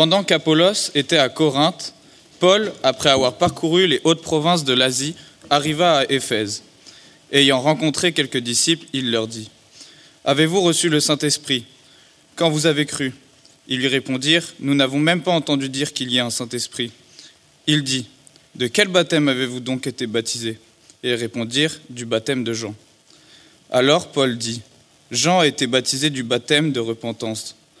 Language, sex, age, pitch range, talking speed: French, male, 20-39, 125-155 Hz, 160 wpm